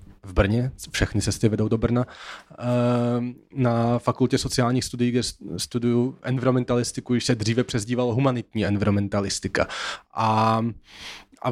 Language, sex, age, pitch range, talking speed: Slovak, male, 20-39, 115-130 Hz, 120 wpm